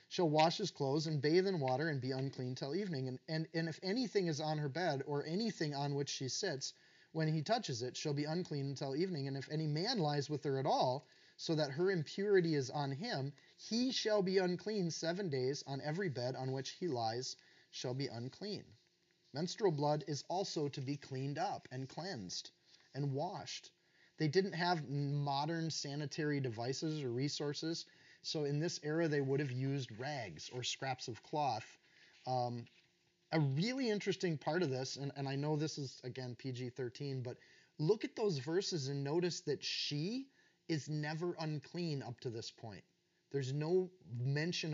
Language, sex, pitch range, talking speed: English, male, 135-175 Hz, 180 wpm